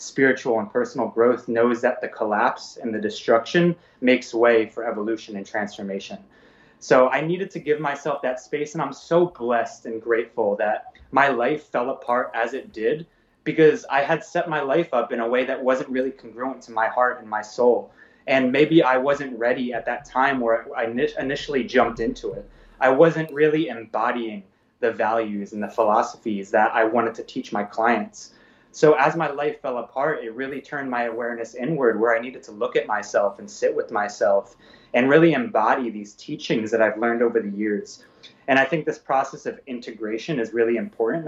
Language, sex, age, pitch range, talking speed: English, male, 20-39, 115-150 Hz, 195 wpm